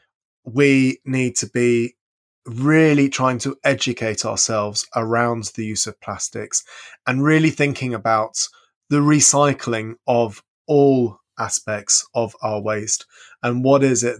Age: 20-39